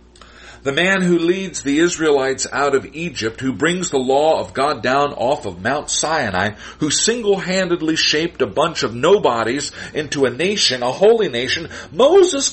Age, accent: 50-69, American